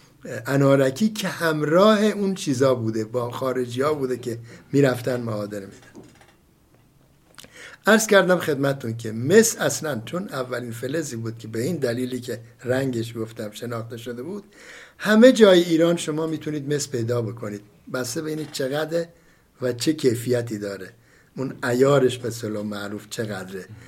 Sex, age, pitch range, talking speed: male, 60-79, 120-170 Hz, 140 wpm